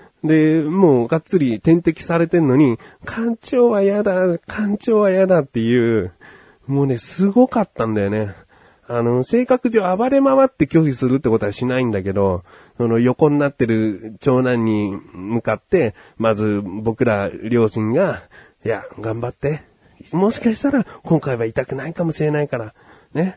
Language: Japanese